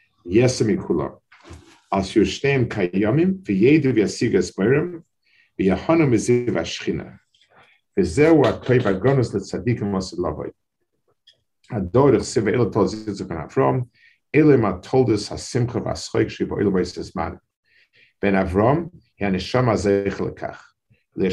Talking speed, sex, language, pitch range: 105 wpm, male, English, 100-130 Hz